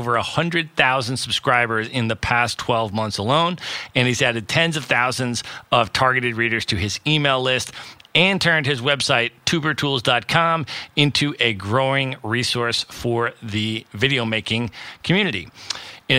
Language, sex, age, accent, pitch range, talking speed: English, male, 40-59, American, 115-140 Hz, 150 wpm